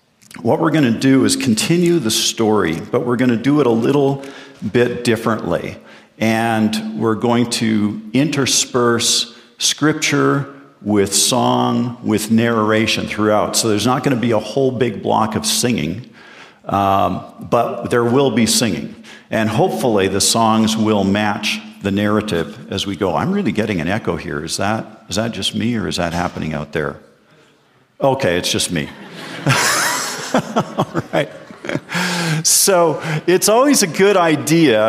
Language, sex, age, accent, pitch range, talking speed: English, male, 50-69, American, 110-135 Hz, 155 wpm